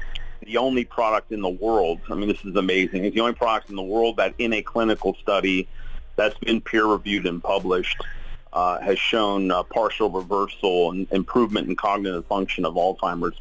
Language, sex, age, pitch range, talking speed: Arabic, male, 40-59, 95-105 Hz, 185 wpm